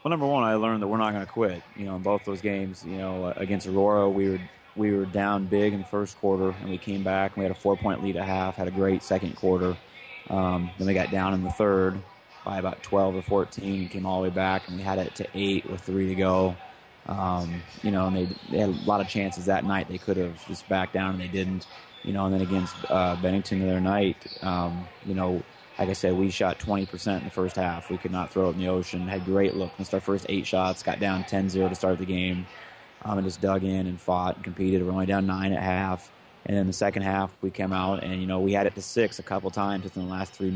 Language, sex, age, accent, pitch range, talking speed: English, male, 20-39, American, 95-100 Hz, 270 wpm